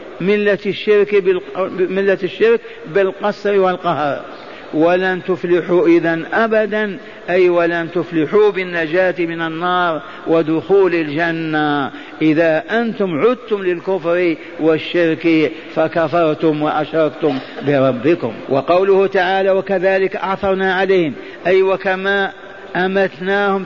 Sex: male